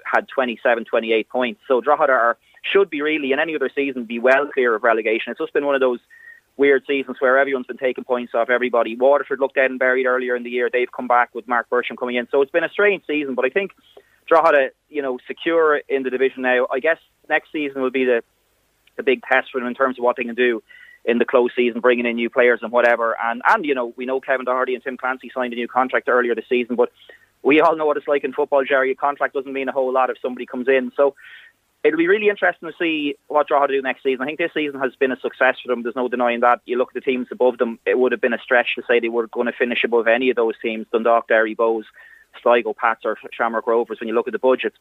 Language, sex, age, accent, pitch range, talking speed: English, male, 30-49, Irish, 120-145 Hz, 270 wpm